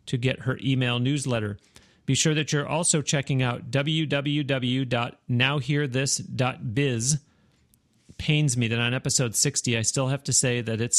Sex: male